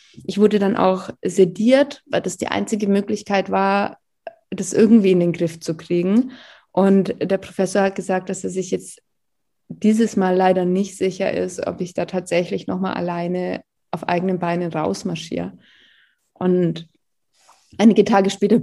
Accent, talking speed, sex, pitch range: German, 150 wpm, female, 185-225 Hz